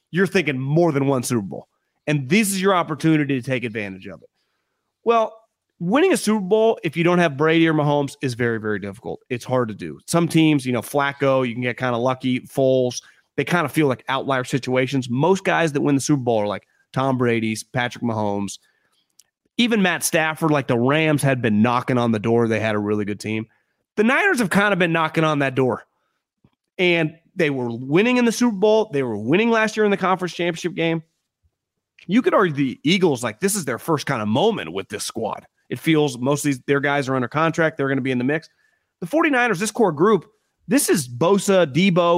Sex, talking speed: male, 220 wpm